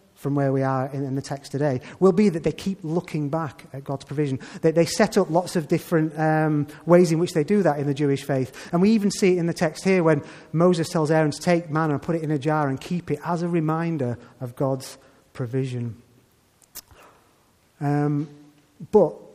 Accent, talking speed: British, 215 wpm